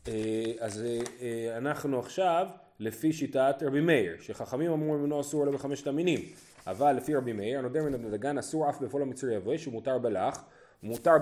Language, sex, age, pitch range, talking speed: Hebrew, male, 30-49, 120-170 Hz, 175 wpm